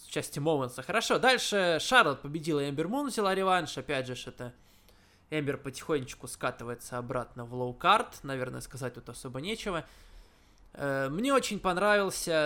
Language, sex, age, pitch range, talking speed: Russian, male, 20-39, 130-175 Hz, 130 wpm